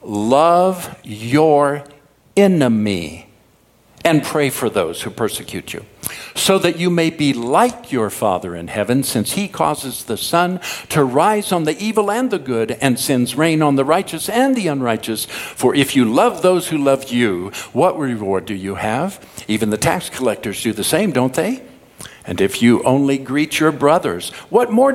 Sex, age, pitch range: male, 60-79, 105-165 Hz